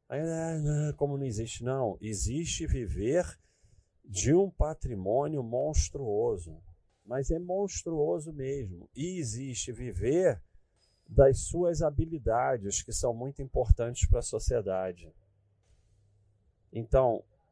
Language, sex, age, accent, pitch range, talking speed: Portuguese, male, 40-59, Brazilian, 100-135 Hz, 95 wpm